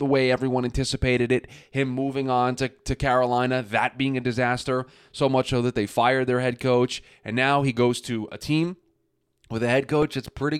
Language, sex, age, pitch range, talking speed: English, male, 20-39, 115-140 Hz, 210 wpm